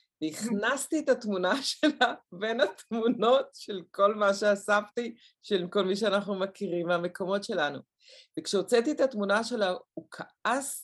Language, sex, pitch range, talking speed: English, female, 175-240 Hz, 125 wpm